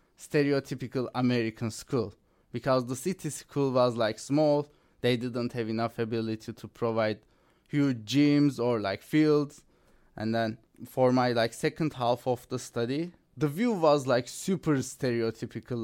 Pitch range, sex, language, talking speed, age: 115-140 Hz, male, English, 145 wpm, 20-39